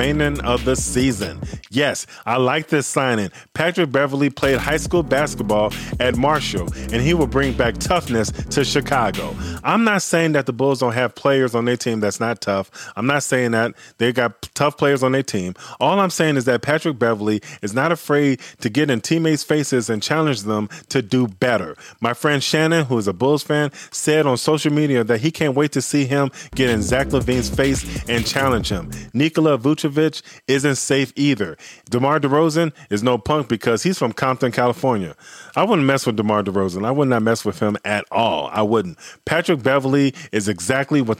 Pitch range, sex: 115-150 Hz, male